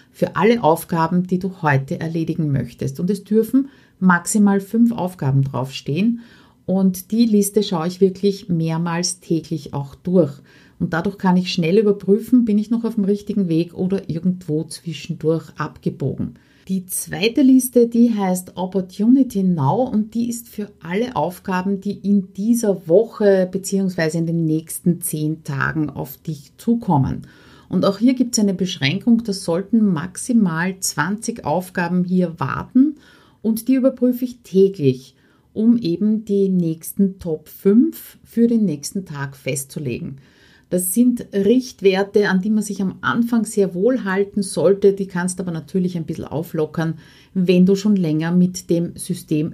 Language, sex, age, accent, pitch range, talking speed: German, female, 50-69, Austrian, 160-210 Hz, 150 wpm